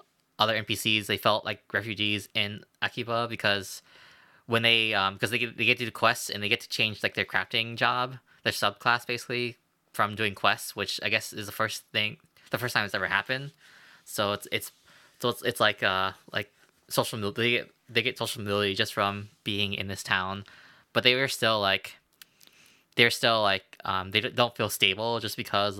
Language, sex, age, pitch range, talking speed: English, male, 10-29, 100-120 Hz, 200 wpm